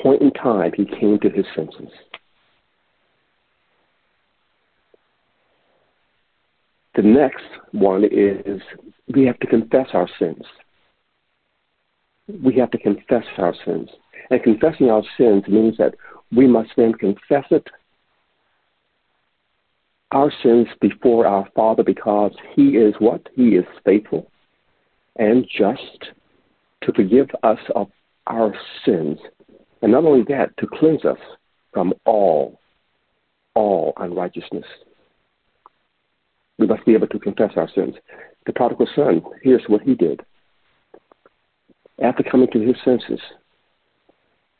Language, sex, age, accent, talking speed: English, male, 60-79, American, 115 wpm